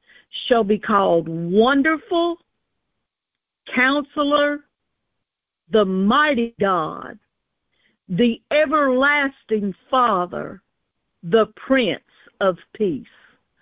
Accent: American